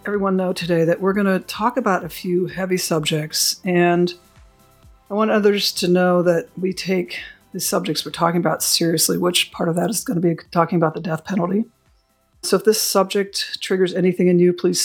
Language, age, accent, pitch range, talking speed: English, 50-69, American, 175-200 Hz, 200 wpm